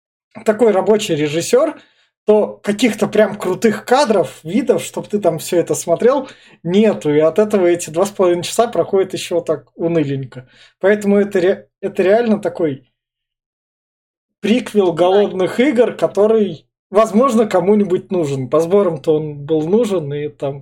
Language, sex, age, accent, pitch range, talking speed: Russian, male, 20-39, native, 160-210 Hz, 145 wpm